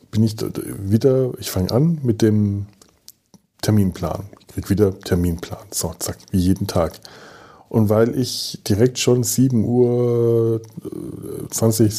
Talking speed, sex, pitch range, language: 125 wpm, male, 100-125 Hz, German